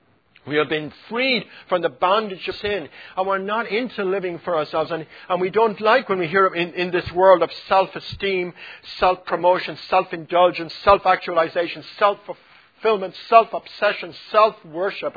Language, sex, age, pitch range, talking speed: English, male, 50-69, 150-190 Hz, 140 wpm